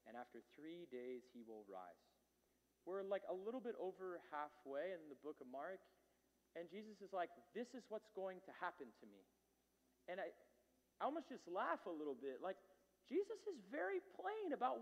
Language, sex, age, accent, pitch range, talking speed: English, male, 30-49, American, 120-200 Hz, 185 wpm